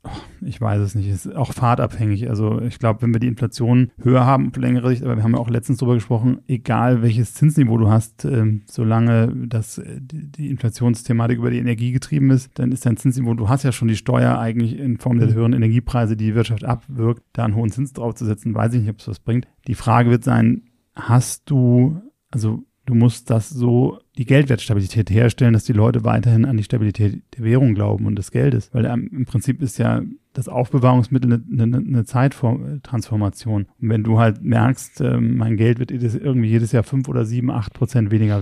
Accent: German